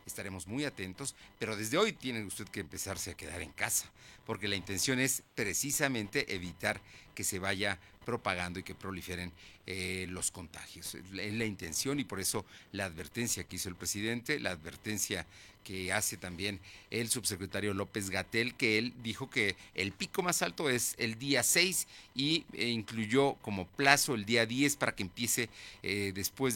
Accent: Mexican